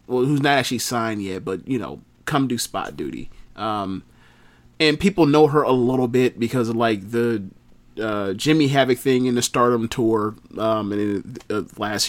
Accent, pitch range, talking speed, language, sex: American, 110-150 Hz, 190 wpm, English, male